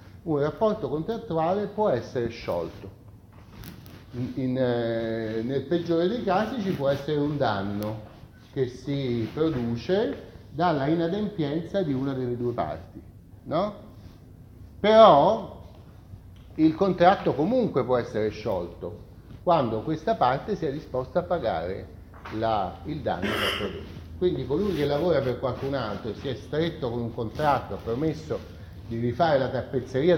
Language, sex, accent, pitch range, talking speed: Italian, male, native, 105-155 Hz, 135 wpm